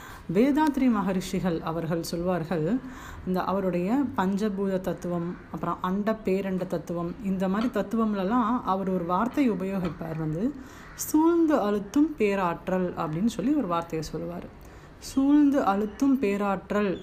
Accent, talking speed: native, 110 wpm